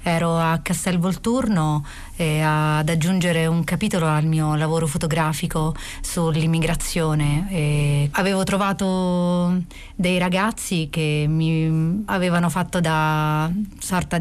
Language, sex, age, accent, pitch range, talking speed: Italian, female, 30-49, native, 155-180 Hz, 100 wpm